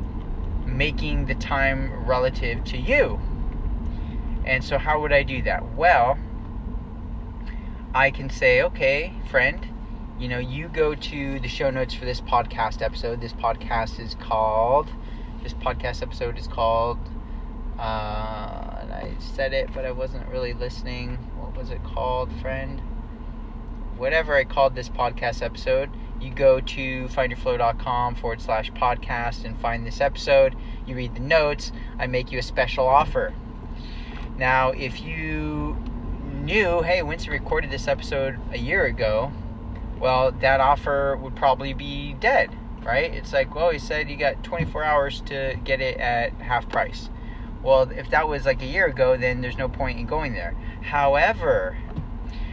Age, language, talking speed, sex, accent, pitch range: 20-39, English, 150 wpm, male, American, 115-135 Hz